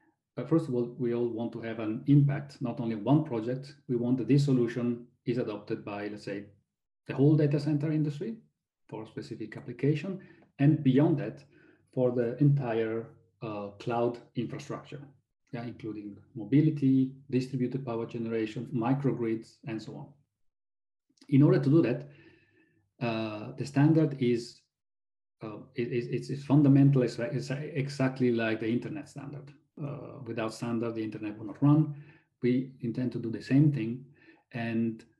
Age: 40-59